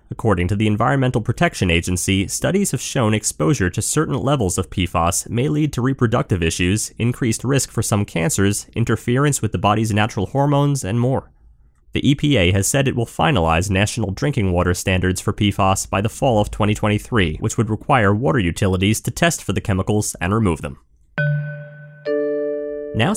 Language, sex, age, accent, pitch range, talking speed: English, male, 30-49, American, 95-135 Hz, 170 wpm